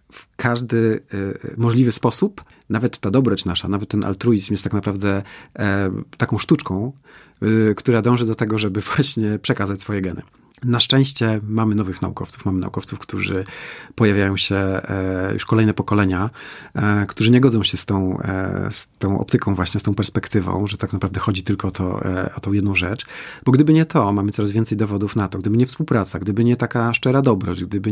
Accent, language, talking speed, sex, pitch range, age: native, Polish, 170 wpm, male, 100-120 Hz, 30-49